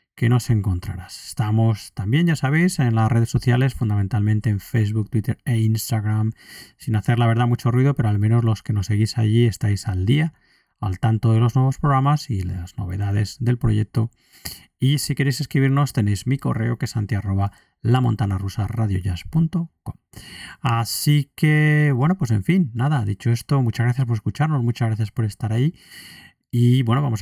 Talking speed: 170 wpm